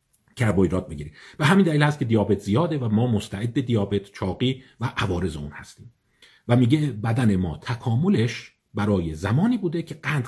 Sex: male